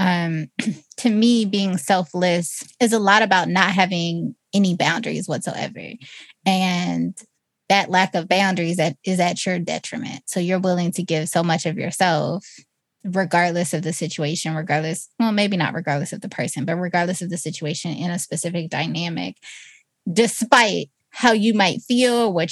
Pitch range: 170-215 Hz